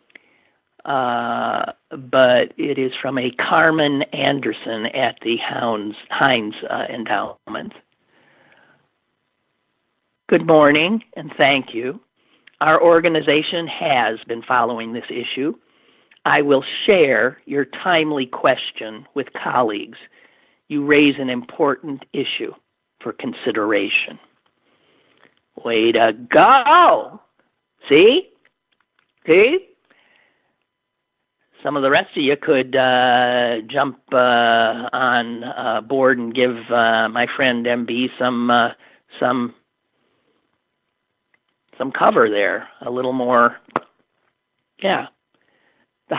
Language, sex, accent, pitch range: English, male, American, 120-165 Hz